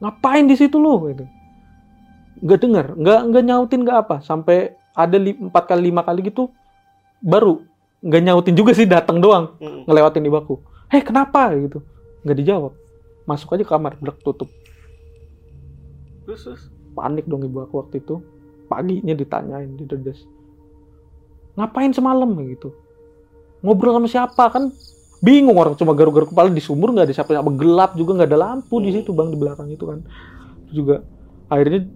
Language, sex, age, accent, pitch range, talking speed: Indonesian, male, 30-49, native, 135-195 Hz, 150 wpm